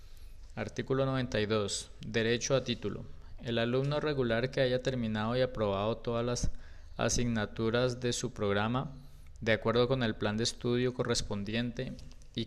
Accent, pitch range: Colombian, 95-125 Hz